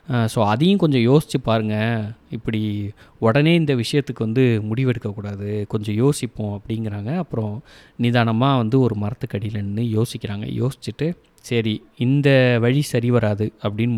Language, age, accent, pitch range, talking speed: Tamil, 30-49, native, 110-140 Hz, 115 wpm